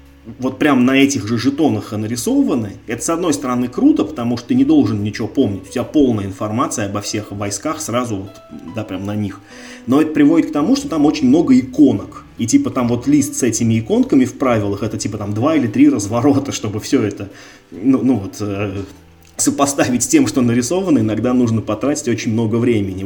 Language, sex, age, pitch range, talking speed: Russian, male, 20-39, 100-130 Hz, 200 wpm